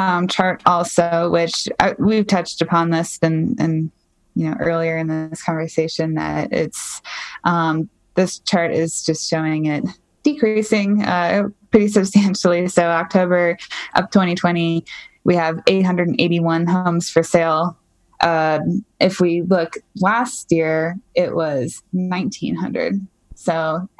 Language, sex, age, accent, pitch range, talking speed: English, female, 20-39, American, 160-180 Hz, 120 wpm